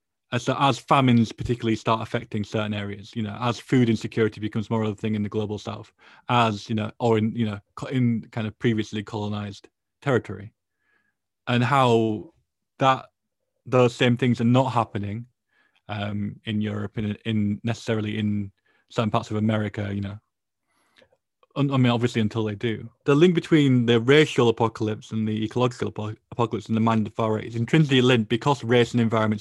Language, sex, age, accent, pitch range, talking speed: English, male, 20-39, British, 105-125 Hz, 180 wpm